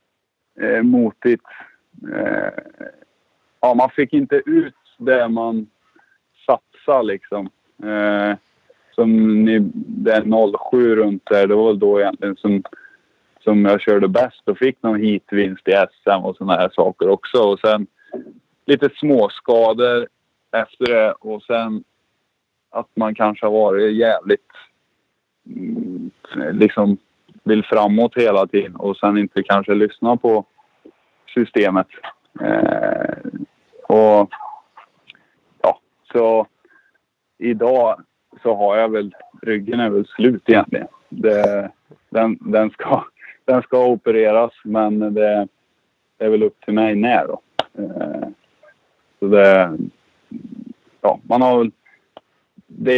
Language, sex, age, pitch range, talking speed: Swedish, male, 20-39, 105-140 Hz, 110 wpm